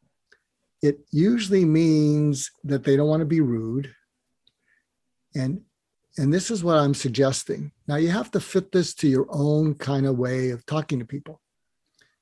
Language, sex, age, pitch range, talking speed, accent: English, male, 50-69, 140-195 Hz, 160 wpm, American